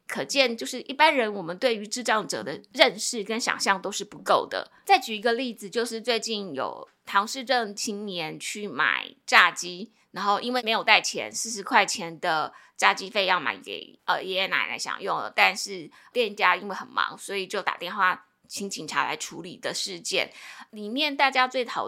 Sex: female